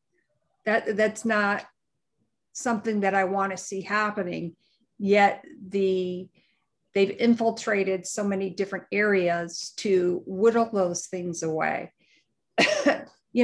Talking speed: 105 wpm